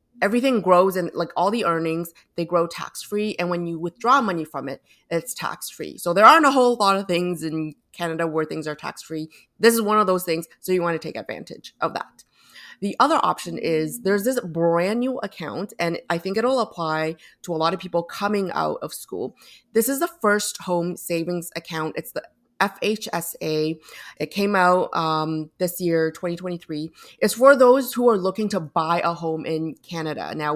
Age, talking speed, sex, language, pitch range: 30-49, 200 wpm, female, English, 165-200 Hz